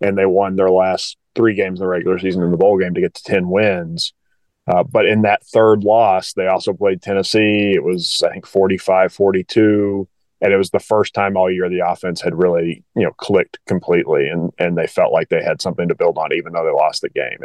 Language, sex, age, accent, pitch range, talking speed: English, male, 30-49, American, 95-130 Hz, 235 wpm